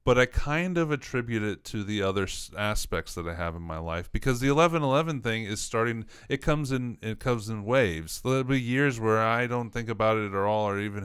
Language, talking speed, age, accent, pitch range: English, 235 wpm, 30-49, American, 90-120 Hz